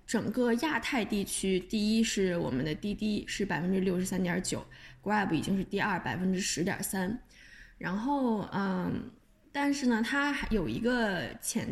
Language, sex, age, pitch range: Chinese, female, 10-29, 190-235 Hz